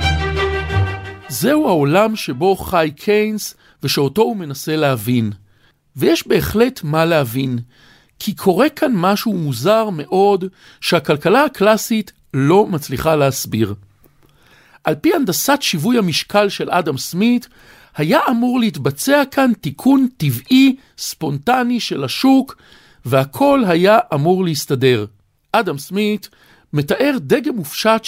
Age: 50-69